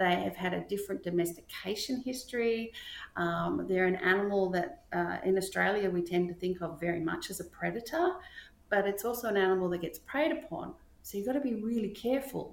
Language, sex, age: English, female, 40-59